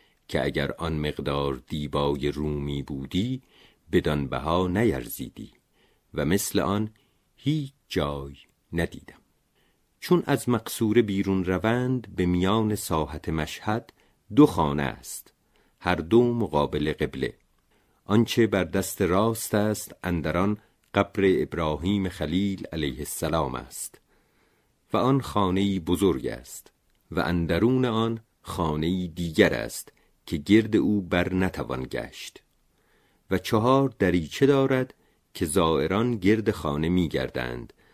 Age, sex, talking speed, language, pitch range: 50-69, male, 110 wpm, Persian, 75-110 Hz